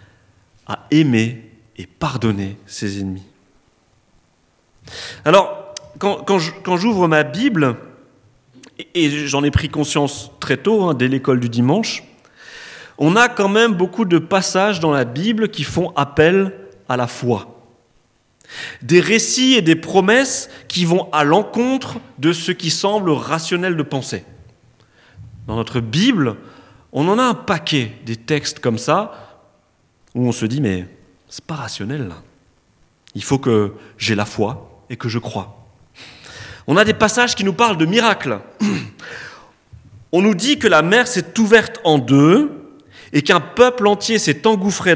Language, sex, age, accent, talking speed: French, male, 40-59, French, 150 wpm